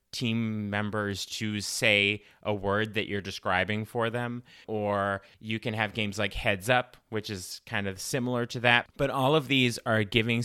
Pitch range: 100-125 Hz